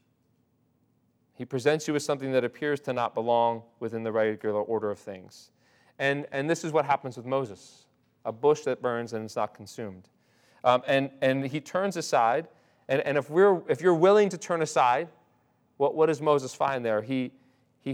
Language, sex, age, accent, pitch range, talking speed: English, male, 40-59, American, 125-165 Hz, 185 wpm